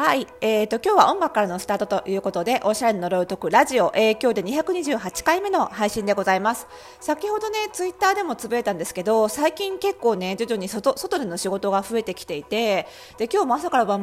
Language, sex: Japanese, female